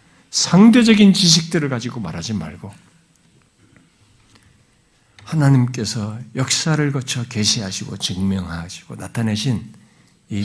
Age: 50-69